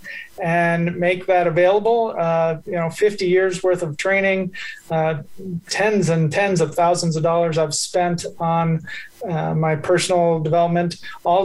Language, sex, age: English, male, 30-49